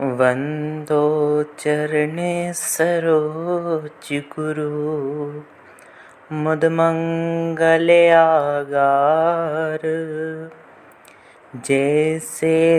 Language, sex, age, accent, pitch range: Hindi, male, 30-49, native, 135-165 Hz